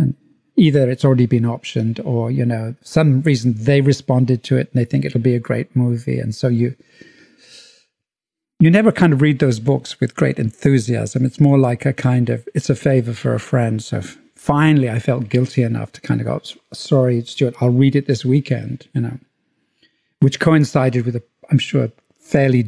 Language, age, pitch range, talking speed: English, 50-69, 120-145 Hz, 195 wpm